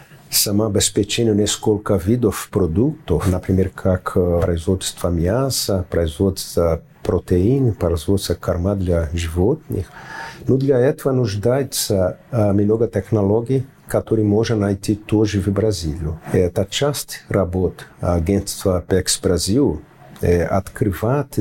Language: Russian